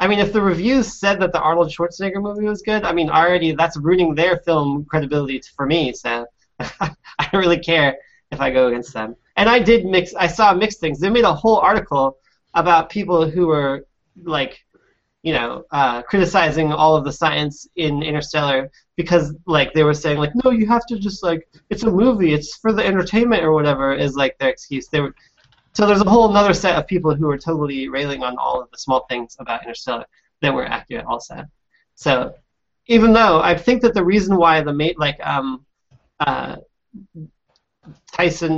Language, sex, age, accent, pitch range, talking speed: English, male, 20-39, American, 145-190 Hz, 200 wpm